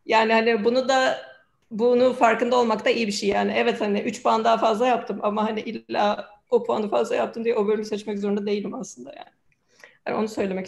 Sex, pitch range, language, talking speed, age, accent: female, 210-250 Hz, Turkish, 210 wpm, 30-49, native